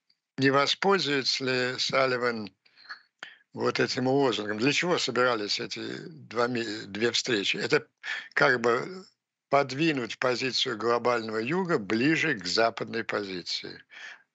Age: 60-79